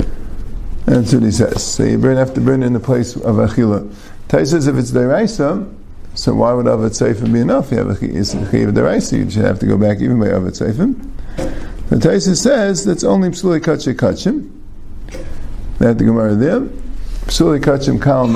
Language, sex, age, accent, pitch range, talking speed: English, male, 50-69, American, 105-145 Hz, 185 wpm